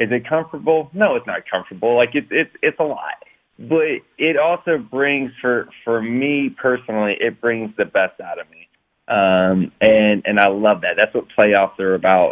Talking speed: 190 wpm